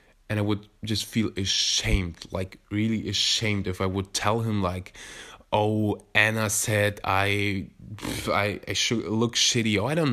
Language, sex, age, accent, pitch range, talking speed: English, male, 20-39, German, 95-125 Hz, 165 wpm